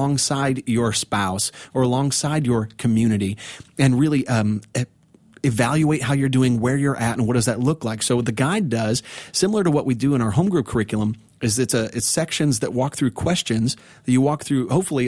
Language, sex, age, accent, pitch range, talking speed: English, male, 30-49, American, 115-140 Hz, 205 wpm